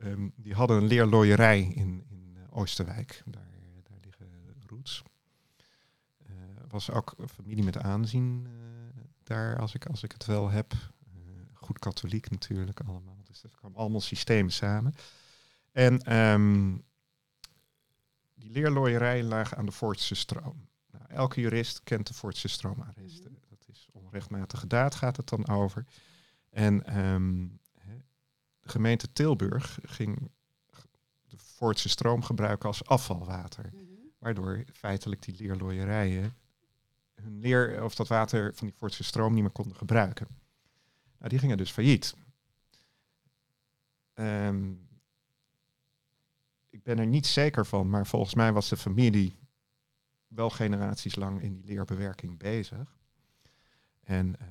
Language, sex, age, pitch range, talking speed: Dutch, male, 40-59, 100-130 Hz, 130 wpm